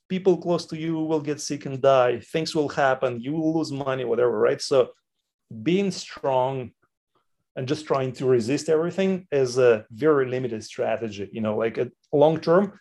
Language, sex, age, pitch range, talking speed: English, male, 30-49, 115-155 Hz, 175 wpm